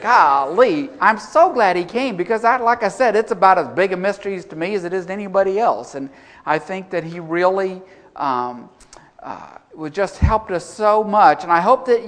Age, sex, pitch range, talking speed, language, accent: 50-69, male, 140-195 Hz, 210 wpm, English, American